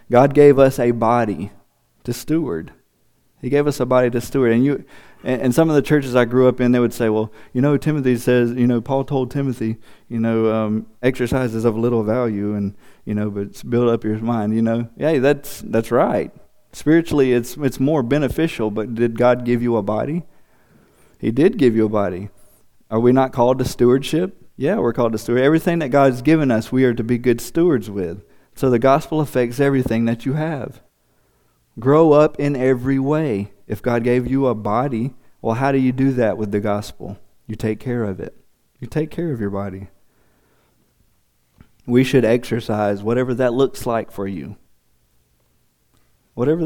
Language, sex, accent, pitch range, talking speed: English, male, American, 110-135 Hz, 195 wpm